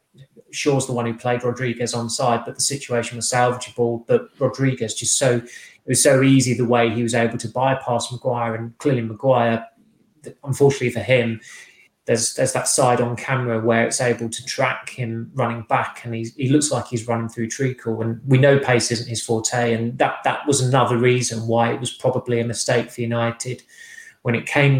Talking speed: 200 wpm